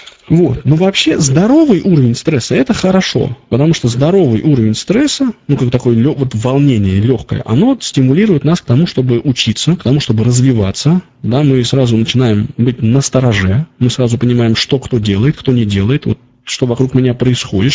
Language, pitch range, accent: Russian, 120-150 Hz, native